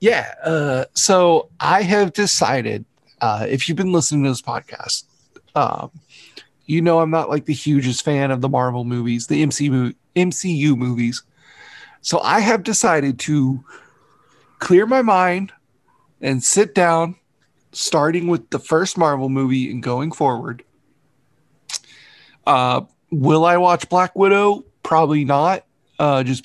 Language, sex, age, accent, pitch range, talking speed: English, male, 40-59, American, 130-165 Hz, 135 wpm